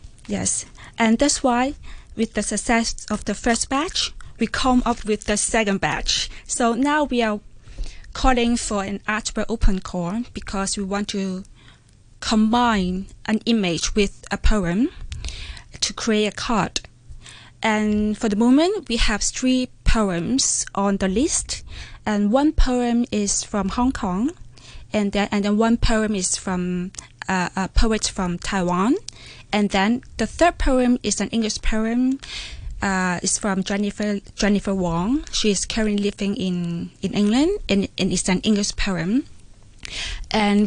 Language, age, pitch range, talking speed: English, 20-39, 195-235 Hz, 150 wpm